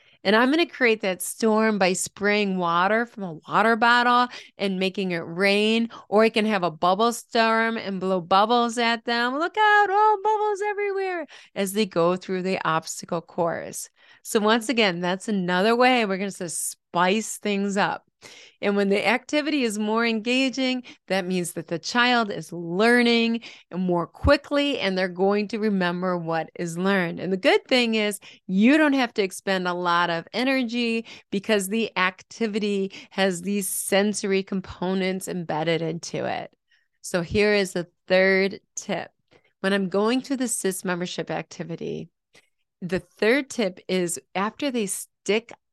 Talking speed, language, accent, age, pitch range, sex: 160 wpm, English, American, 30-49, 190-260 Hz, female